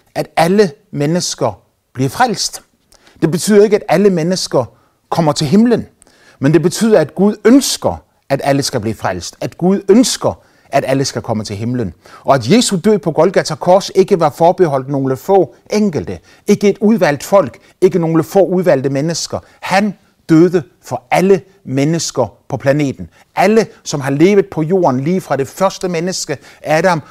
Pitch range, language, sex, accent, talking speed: 120-185 Hz, Danish, male, native, 165 wpm